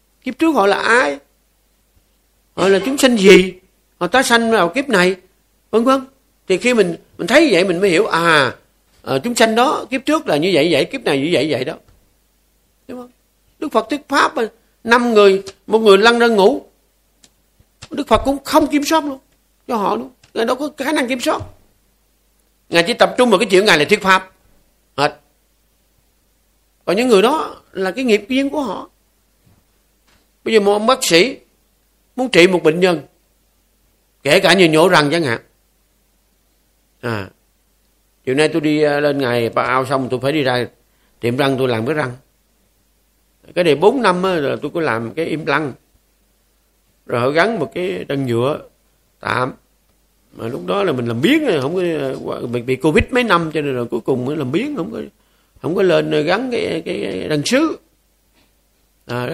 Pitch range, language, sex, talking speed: 150-255 Hz, Vietnamese, male, 190 wpm